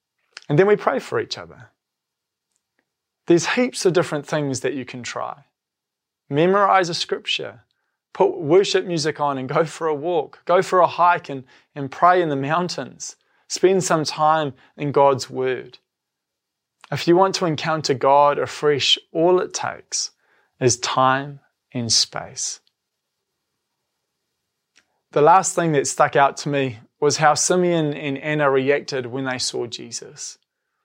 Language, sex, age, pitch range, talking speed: English, male, 20-39, 135-170 Hz, 150 wpm